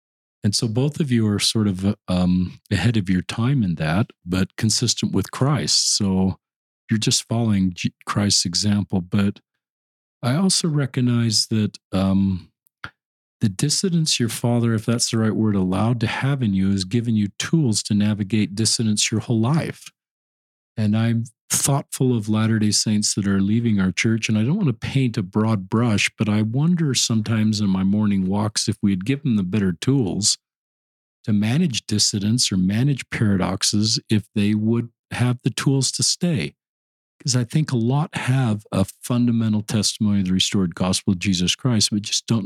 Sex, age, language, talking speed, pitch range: male, 40-59, English, 175 wpm, 100-120 Hz